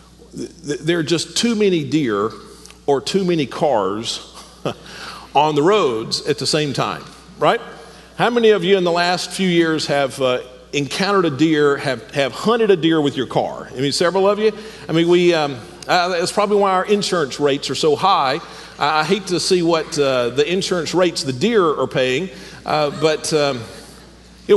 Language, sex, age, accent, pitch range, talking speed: English, male, 50-69, American, 165-245 Hz, 185 wpm